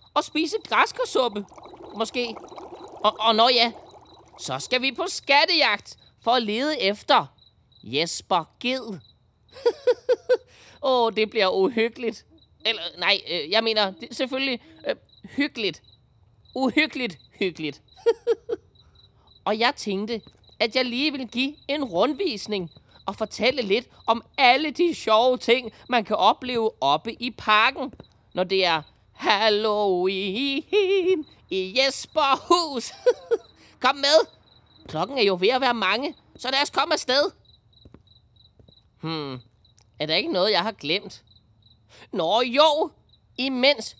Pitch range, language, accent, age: 200-290 Hz, Danish, native, 20-39